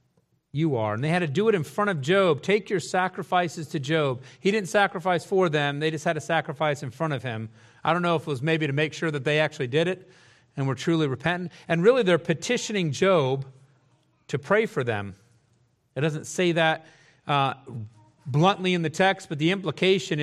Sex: male